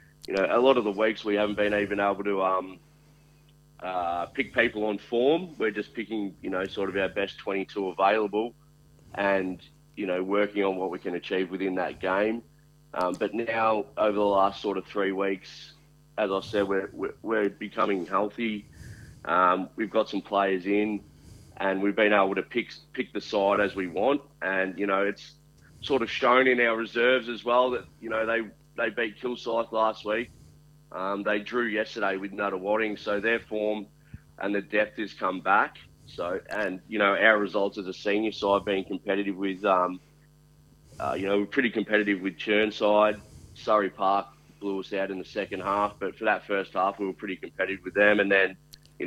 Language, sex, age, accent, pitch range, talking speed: English, male, 30-49, Australian, 95-115 Hz, 195 wpm